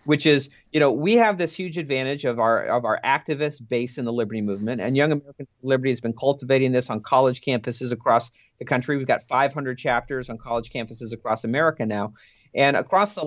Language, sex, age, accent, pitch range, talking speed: English, male, 40-59, American, 120-150 Hz, 210 wpm